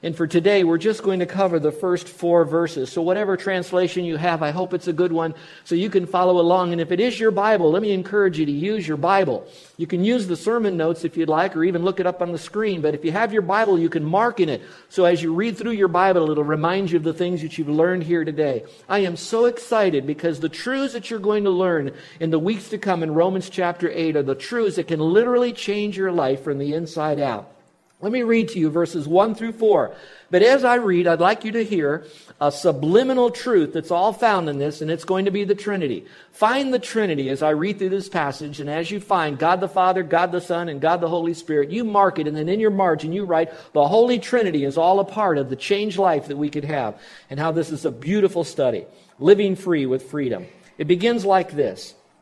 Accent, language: American, English